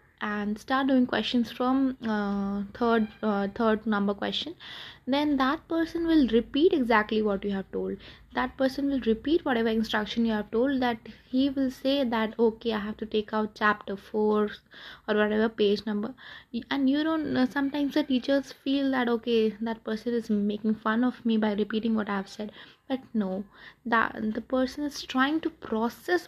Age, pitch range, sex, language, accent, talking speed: 20-39, 215-265 Hz, female, Hindi, native, 180 wpm